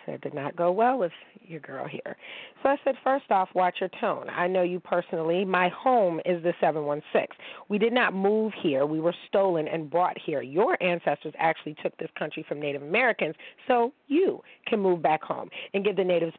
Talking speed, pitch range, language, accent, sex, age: 205 wpm, 175-235 Hz, English, American, female, 40-59